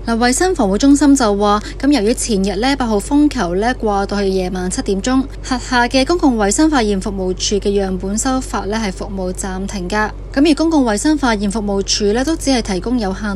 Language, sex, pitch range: Chinese, female, 200-270 Hz